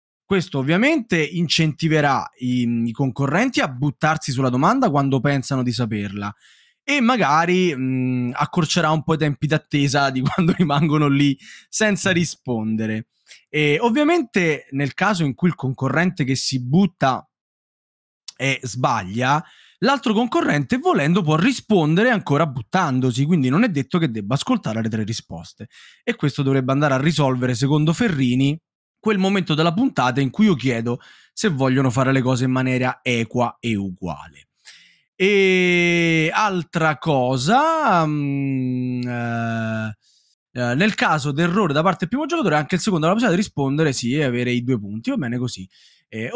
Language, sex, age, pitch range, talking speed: Italian, male, 20-39, 130-185 Hz, 150 wpm